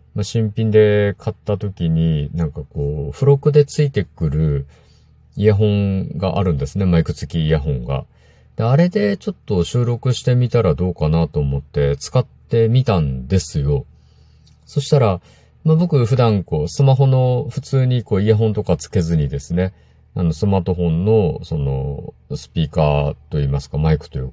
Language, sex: Japanese, male